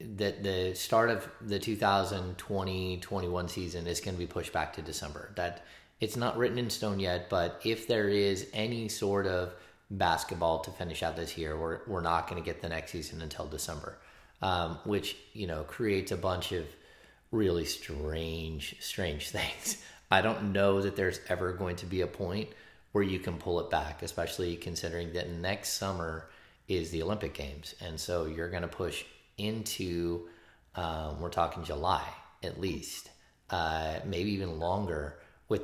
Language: English